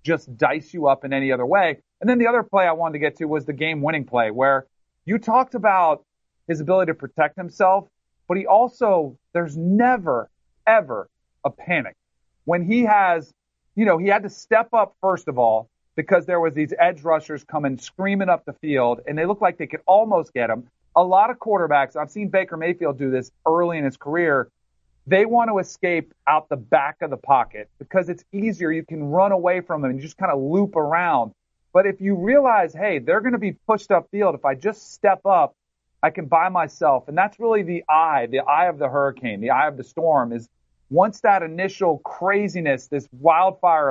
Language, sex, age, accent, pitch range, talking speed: English, male, 40-59, American, 140-195 Hz, 210 wpm